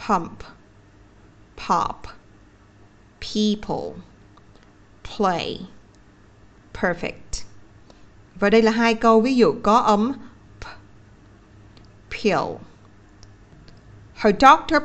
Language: Vietnamese